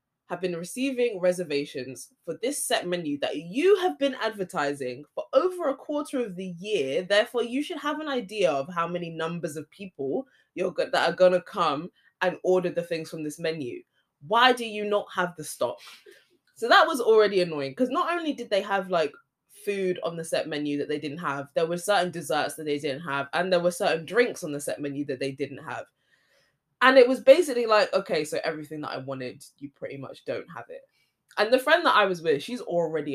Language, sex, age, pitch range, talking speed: English, female, 20-39, 145-225 Hz, 220 wpm